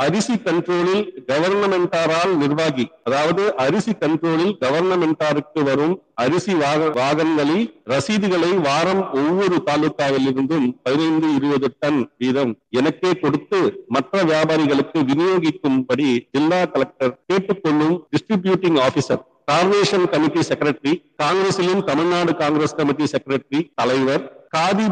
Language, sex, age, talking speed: Tamil, male, 50-69, 95 wpm